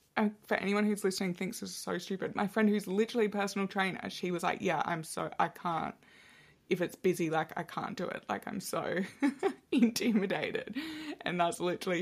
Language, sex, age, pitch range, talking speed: English, female, 20-39, 165-205 Hz, 190 wpm